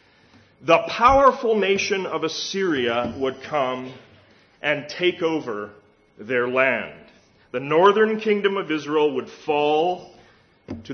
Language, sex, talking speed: English, male, 110 wpm